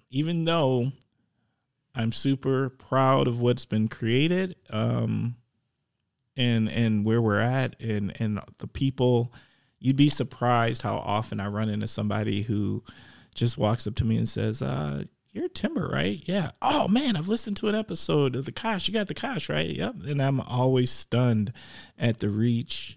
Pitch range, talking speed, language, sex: 110-135 Hz, 165 wpm, English, male